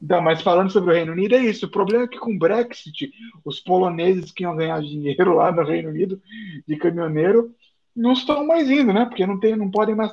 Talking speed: 230 wpm